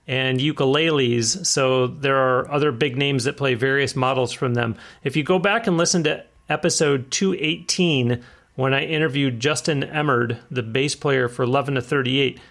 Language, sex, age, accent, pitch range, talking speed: English, male, 40-59, American, 130-160 Hz, 170 wpm